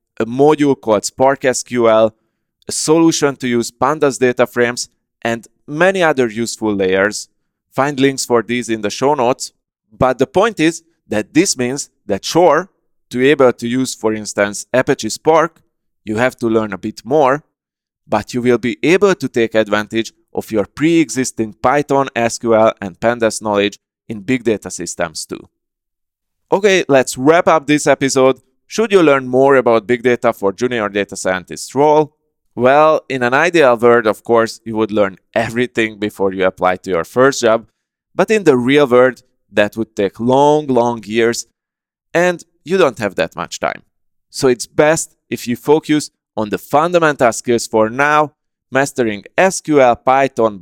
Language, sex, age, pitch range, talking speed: English, male, 30-49, 110-140 Hz, 165 wpm